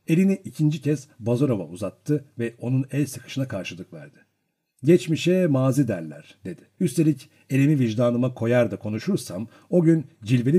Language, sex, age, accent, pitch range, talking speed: Turkish, male, 60-79, native, 115-155 Hz, 135 wpm